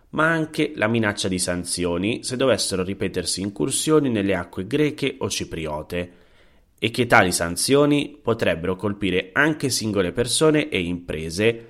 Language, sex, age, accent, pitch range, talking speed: Italian, male, 30-49, native, 90-120 Hz, 135 wpm